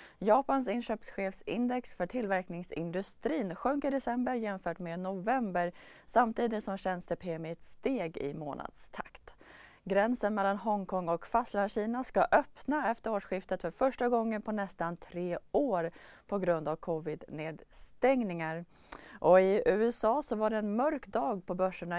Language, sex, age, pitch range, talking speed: Swedish, female, 30-49, 180-230 Hz, 130 wpm